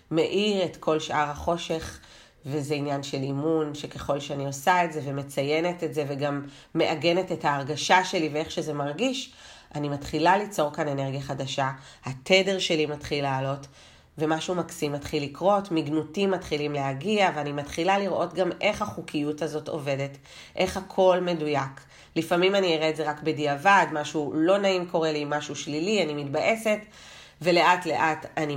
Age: 30-49